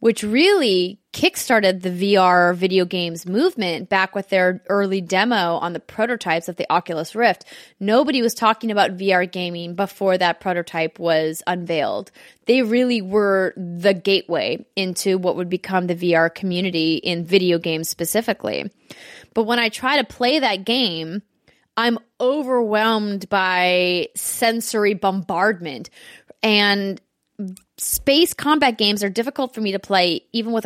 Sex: female